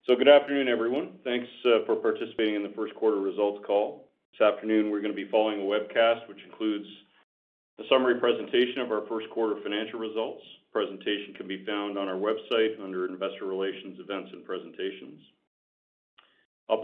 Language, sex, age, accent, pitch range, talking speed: English, male, 40-59, American, 95-115 Hz, 170 wpm